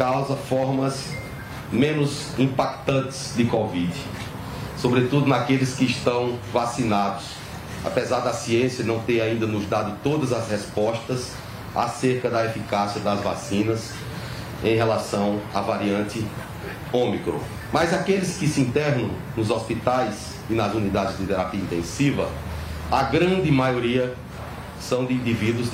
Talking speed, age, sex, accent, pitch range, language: 120 wpm, 40-59, male, Brazilian, 110-135 Hz, Portuguese